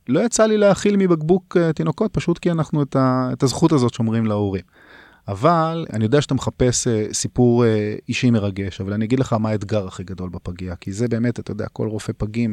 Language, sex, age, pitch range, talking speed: Hebrew, male, 30-49, 100-125 Hz, 210 wpm